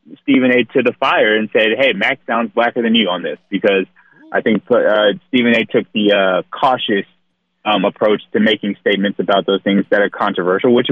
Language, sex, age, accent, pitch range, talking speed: English, male, 30-49, American, 100-125 Hz, 205 wpm